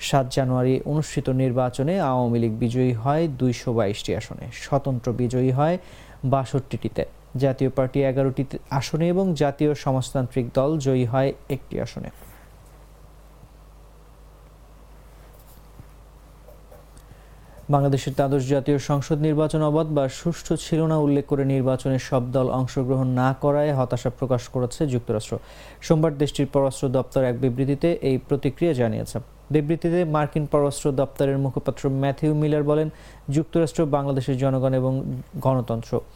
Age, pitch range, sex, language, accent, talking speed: 30-49, 130-155 Hz, male, English, Indian, 95 wpm